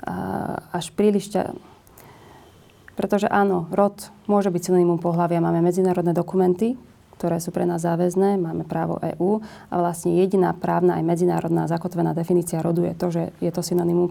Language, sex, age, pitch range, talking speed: Slovak, female, 30-49, 170-185 Hz, 150 wpm